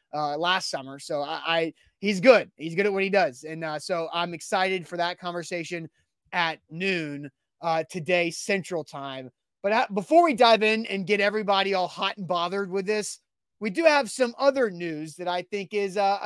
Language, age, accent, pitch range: English, 30-49, American, 180-225 Hz